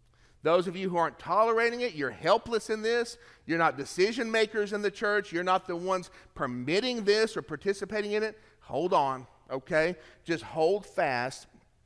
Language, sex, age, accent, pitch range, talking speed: English, male, 40-59, American, 135-185 Hz, 170 wpm